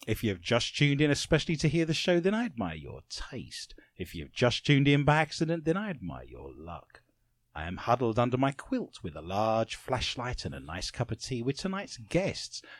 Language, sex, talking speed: English, male, 225 wpm